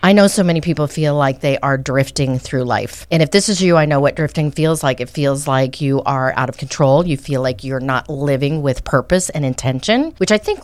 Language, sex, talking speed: English, female, 250 wpm